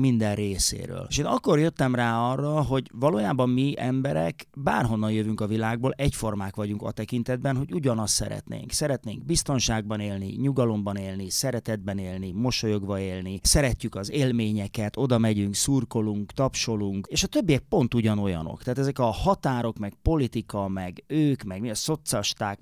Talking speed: 150 wpm